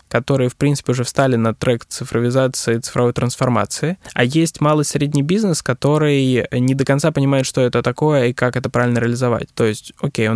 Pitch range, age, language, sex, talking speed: 115-135 Hz, 20-39, Russian, male, 185 wpm